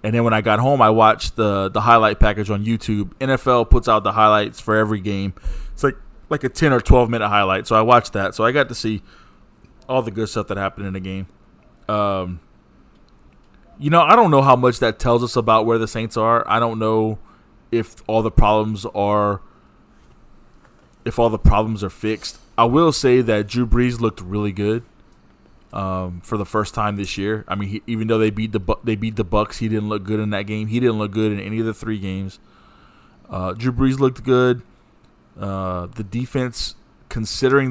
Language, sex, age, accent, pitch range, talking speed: English, male, 20-39, American, 100-115 Hz, 210 wpm